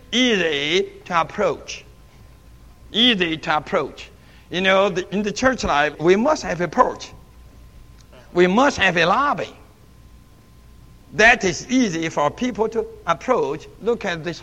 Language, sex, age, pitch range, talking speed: English, male, 60-79, 155-225 Hz, 135 wpm